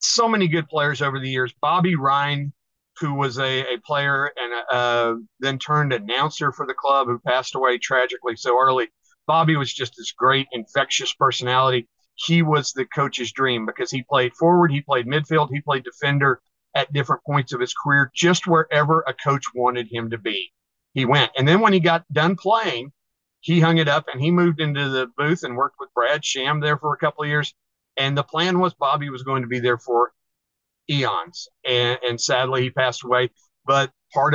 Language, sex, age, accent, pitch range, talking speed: English, male, 50-69, American, 125-150 Hz, 195 wpm